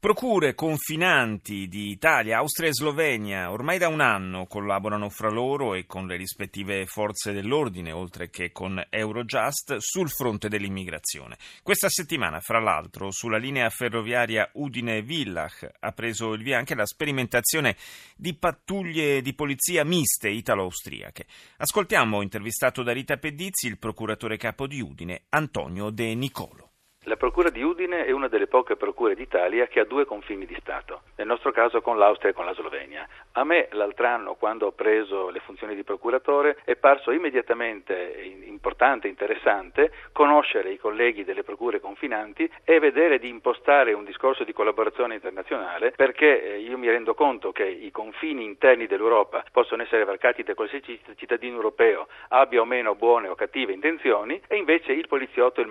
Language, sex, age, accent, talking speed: Italian, male, 30-49, native, 160 wpm